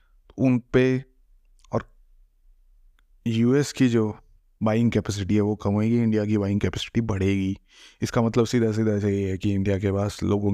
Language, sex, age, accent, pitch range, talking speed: Hindi, male, 20-39, native, 100-115 Hz, 165 wpm